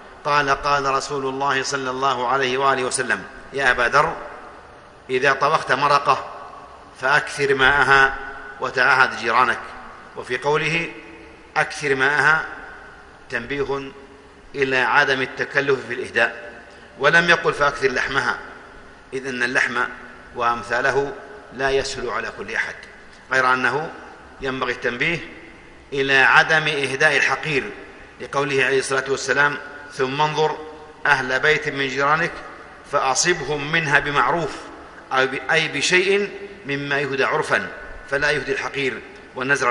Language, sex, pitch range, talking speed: Arabic, male, 135-155 Hz, 105 wpm